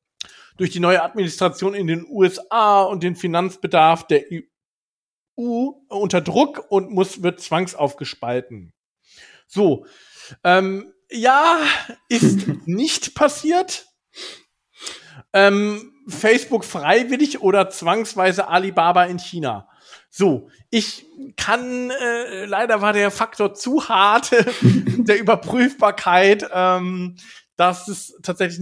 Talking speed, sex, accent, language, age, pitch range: 100 wpm, male, German, German, 40-59, 165-215 Hz